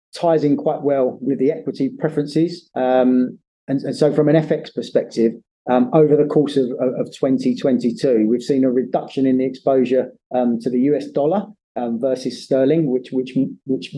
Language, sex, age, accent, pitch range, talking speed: English, male, 30-49, British, 120-145 Hz, 170 wpm